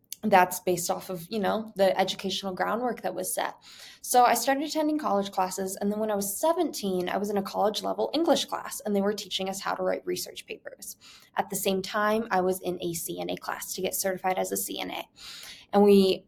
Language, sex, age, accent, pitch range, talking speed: English, female, 20-39, American, 190-235 Hz, 220 wpm